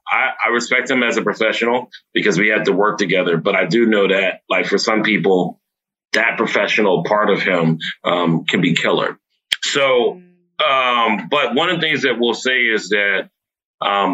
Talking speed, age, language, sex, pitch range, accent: 180 wpm, 30-49, English, male, 100-125 Hz, American